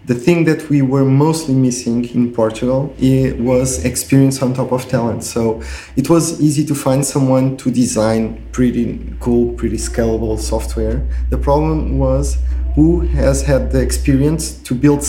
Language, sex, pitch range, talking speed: English, male, 110-135 Hz, 160 wpm